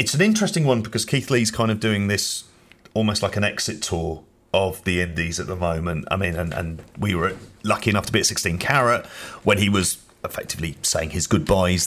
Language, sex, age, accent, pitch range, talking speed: English, male, 30-49, British, 95-120 Hz, 210 wpm